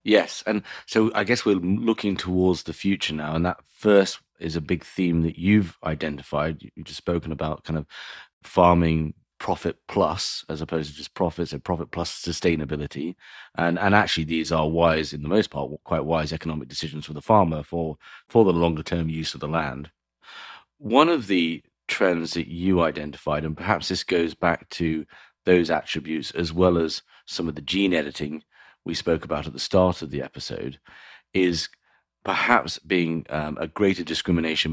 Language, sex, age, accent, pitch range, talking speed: English, male, 30-49, British, 80-90 Hz, 180 wpm